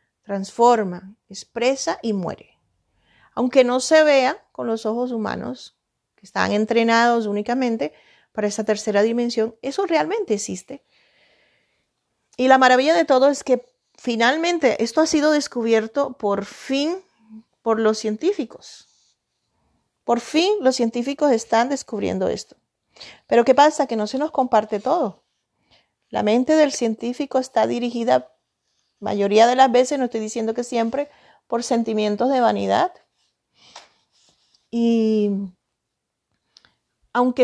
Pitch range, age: 220-265 Hz, 40-59